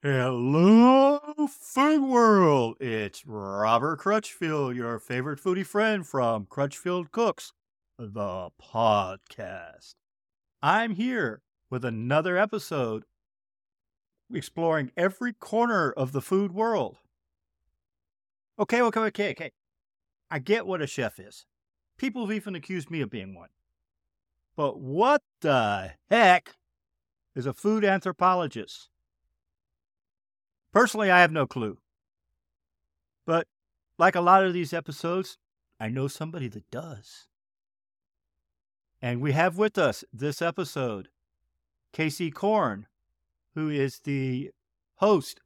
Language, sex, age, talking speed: English, male, 50-69, 110 wpm